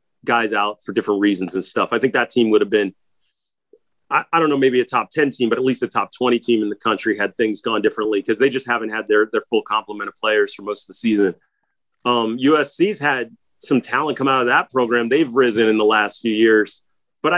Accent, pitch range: American, 120-145 Hz